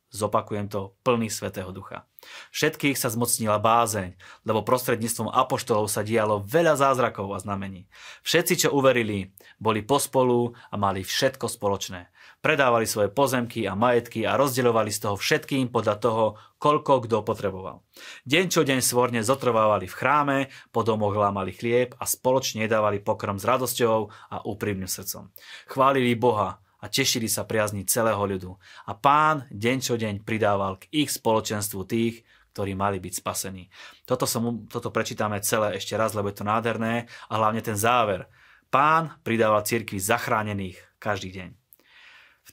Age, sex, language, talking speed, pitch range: 30-49, male, Slovak, 150 wpm, 105-125 Hz